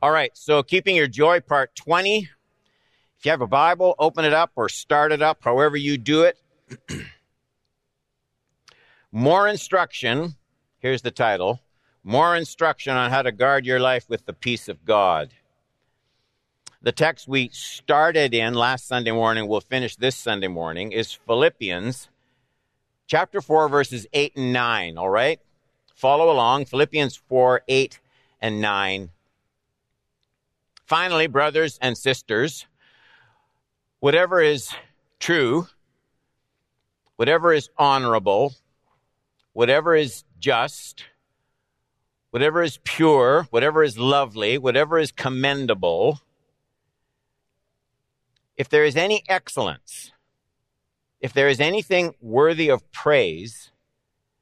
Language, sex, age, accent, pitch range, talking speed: English, male, 60-79, American, 125-155 Hz, 115 wpm